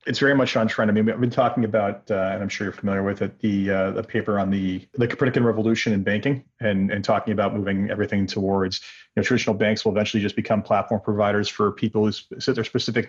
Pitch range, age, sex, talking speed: 105-125 Hz, 30-49, male, 245 wpm